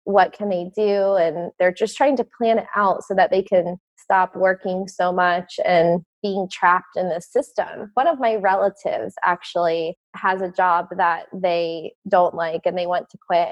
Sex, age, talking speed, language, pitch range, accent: female, 20-39, 190 wpm, English, 180-205 Hz, American